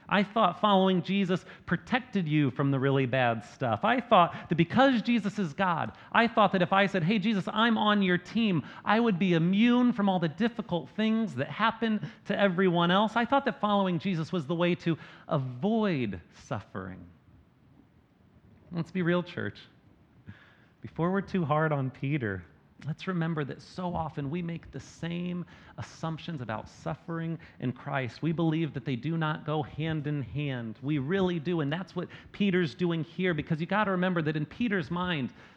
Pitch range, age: 155-200 Hz, 40-59